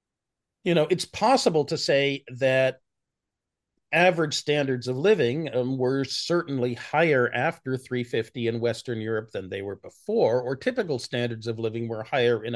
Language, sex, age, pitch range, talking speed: English, male, 40-59, 120-150 Hz, 155 wpm